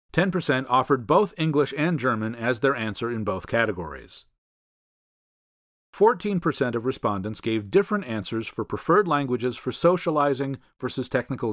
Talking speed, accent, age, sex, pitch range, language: 125 wpm, American, 40-59, male, 120-165 Hz, English